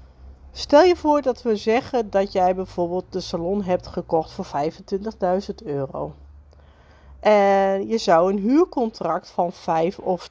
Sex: female